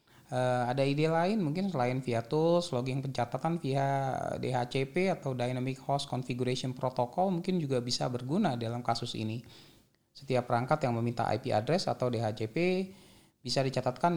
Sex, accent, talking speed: male, native, 140 wpm